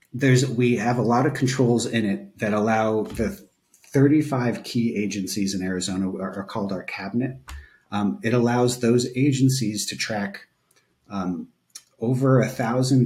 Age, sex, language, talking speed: 30-49, male, English, 145 wpm